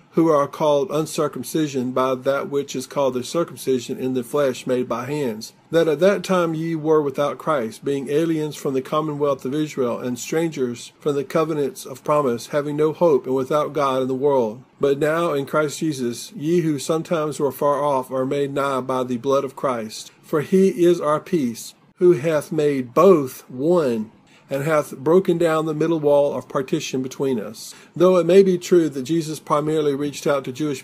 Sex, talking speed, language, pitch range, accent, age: male, 195 wpm, English, 130-160 Hz, American, 50-69